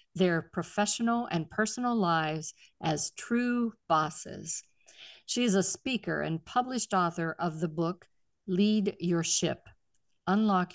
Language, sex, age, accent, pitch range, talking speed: English, female, 50-69, American, 170-215 Hz, 125 wpm